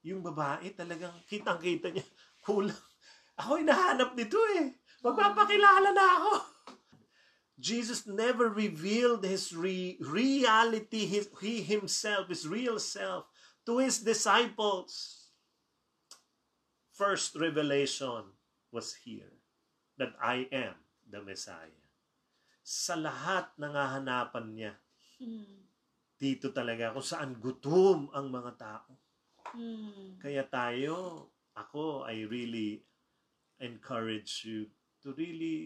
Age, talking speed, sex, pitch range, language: 30-49, 100 wpm, male, 125-200 Hz, English